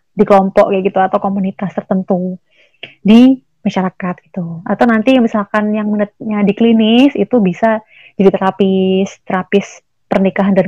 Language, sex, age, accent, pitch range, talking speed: Indonesian, female, 30-49, native, 195-235 Hz, 130 wpm